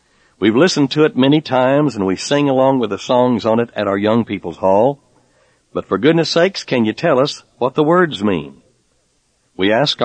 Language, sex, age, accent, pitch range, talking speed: English, male, 60-79, American, 110-150 Hz, 205 wpm